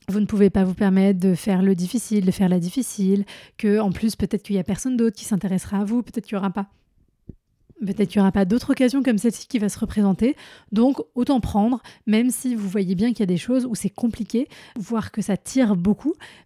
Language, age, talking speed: French, 20-39, 240 wpm